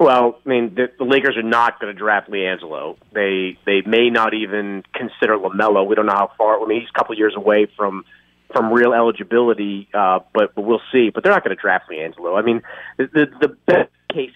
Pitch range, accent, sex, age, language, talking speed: 110-155 Hz, American, male, 30-49, English, 225 wpm